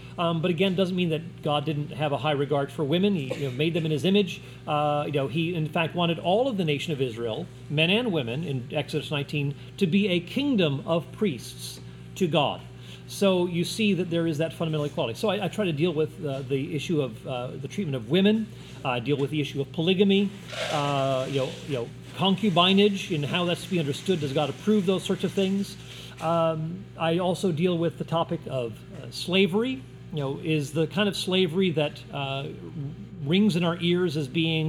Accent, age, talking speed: American, 40-59, 215 wpm